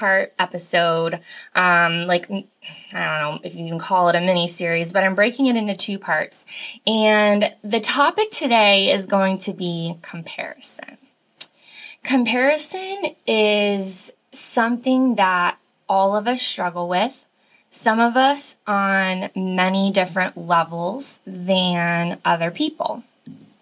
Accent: American